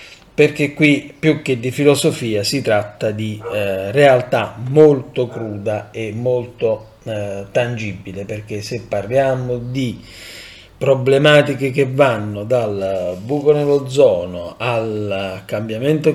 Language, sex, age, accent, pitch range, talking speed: Italian, male, 40-59, native, 105-140 Hz, 110 wpm